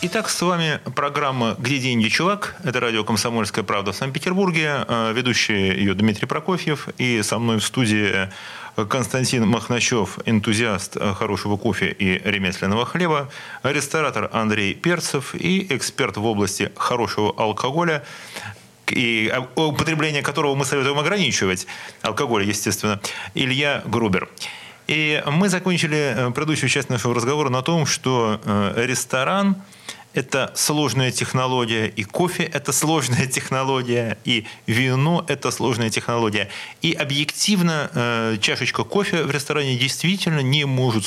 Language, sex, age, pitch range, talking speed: Russian, male, 30-49, 110-155 Hz, 120 wpm